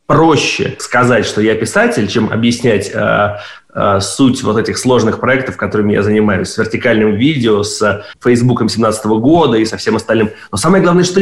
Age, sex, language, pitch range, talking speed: 30-49, male, Russian, 115-140 Hz, 175 wpm